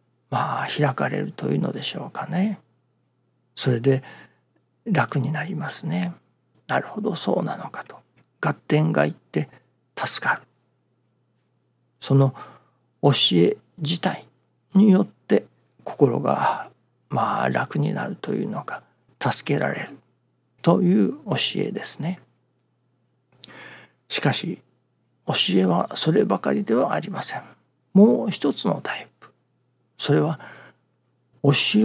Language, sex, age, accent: Japanese, male, 50-69, native